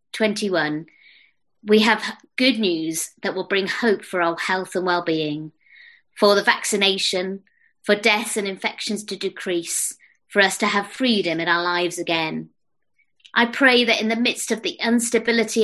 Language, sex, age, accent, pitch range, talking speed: English, female, 30-49, British, 180-230 Hz, 155 wpm